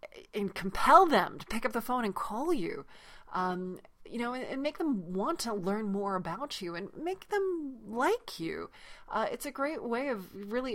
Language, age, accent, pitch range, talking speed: English, 30-49, American, 175-235 Hz, 200 wpm